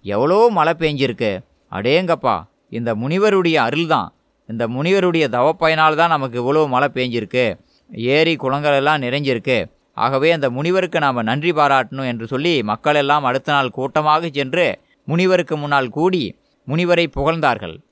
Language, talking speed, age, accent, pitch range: Tamil, 125 wpm, 20-39, native, 135-180 Hz